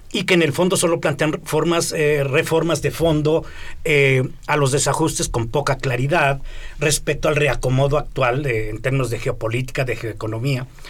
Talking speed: 165 wpm